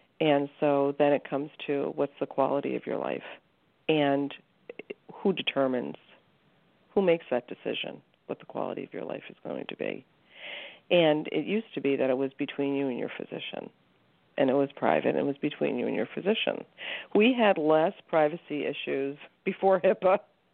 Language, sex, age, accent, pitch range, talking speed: English, female, 50-69, American, 145-180 Hz, 175 wpm